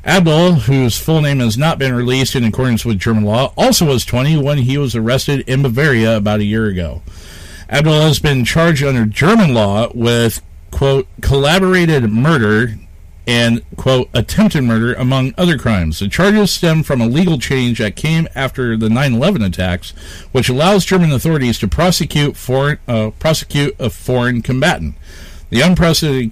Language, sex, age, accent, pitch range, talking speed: English, male, 50-69, American, 110-150 Hz, 160 wpm